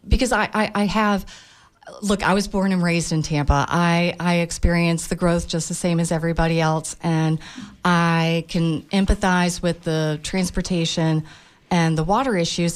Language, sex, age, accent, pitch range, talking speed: English, female, 40-59, American, 160-190 Hz, 165 wpm